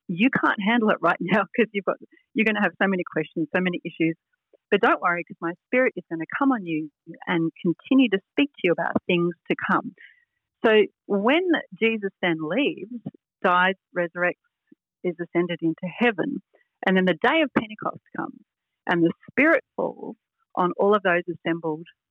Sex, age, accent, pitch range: female, 60-79, Australian, 170-225 Hz